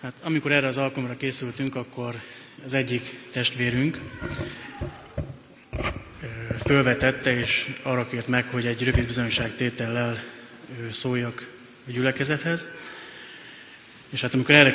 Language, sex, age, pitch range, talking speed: Hungarian, male, 30-49, 125-135 Hz, 110 wpm